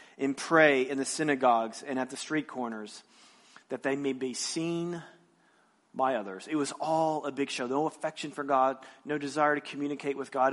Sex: male